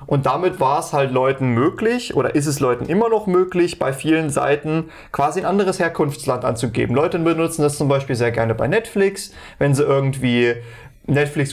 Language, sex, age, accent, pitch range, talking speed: German, male, 30-49, German, 130-165 Hz, 180 wpm